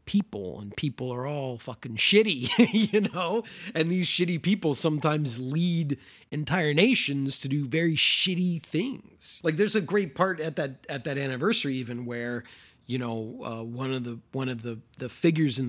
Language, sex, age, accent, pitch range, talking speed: English, male, 30-49, American, 120-160 Hz, 175 wpm